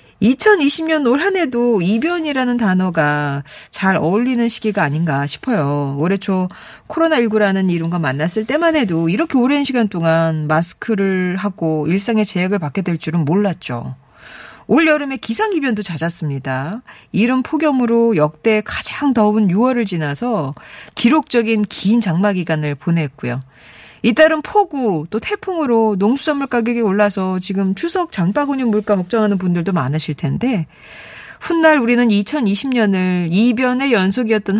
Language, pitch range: Korean, 170-265 Hz